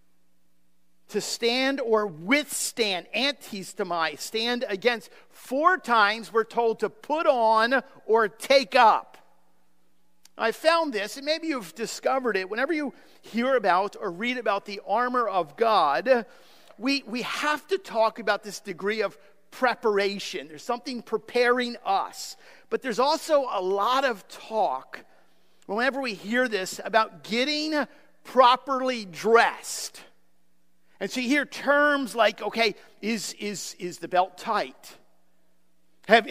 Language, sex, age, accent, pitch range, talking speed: English, male, 50-69, American, 200-260 Hz, 130 wpm